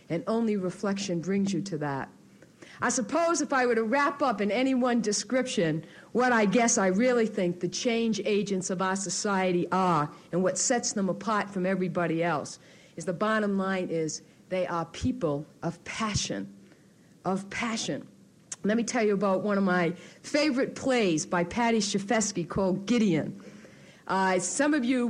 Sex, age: female, 50-69